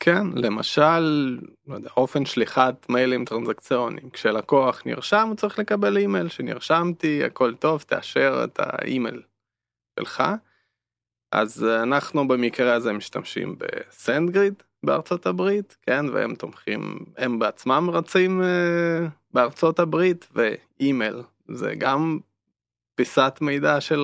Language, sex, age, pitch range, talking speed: Hebrew, male, 20-39, 120-175 Hz, 110 wpm